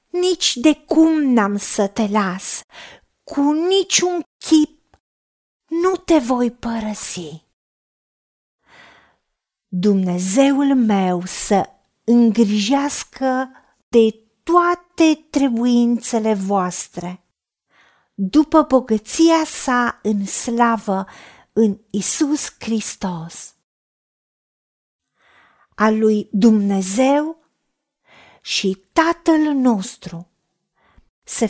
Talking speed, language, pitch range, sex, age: 70 wpm, Romanian, 195-280 Hz, female, 40-59